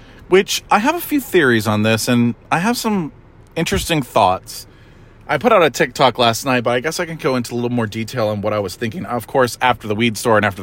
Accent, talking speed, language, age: American, 255 wpm, English, 30-49